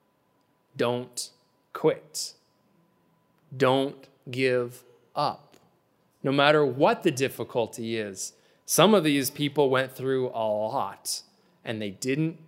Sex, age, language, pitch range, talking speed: male, 20-39, English, 125-190 Hz, 105 wpm